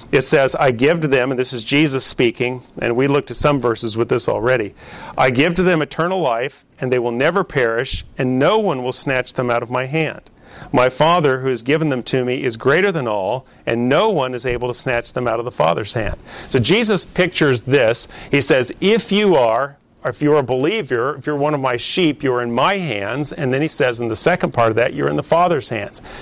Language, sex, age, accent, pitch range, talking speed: English, male, 40-59, American, 125-160 Hz, 240 wpm